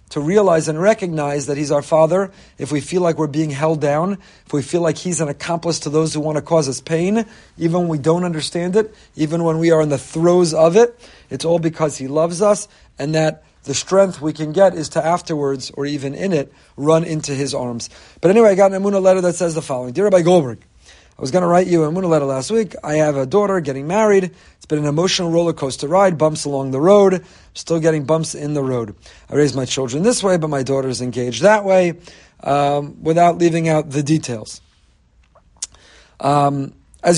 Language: English